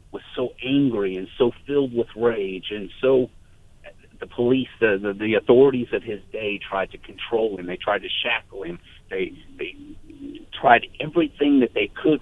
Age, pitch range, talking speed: 50-69, 95-135 Hz, 170 wpm